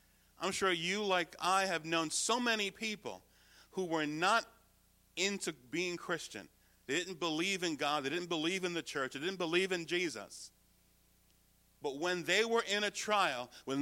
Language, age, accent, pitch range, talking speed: English, 40-59, American, 145-200 Hz, 175 wpm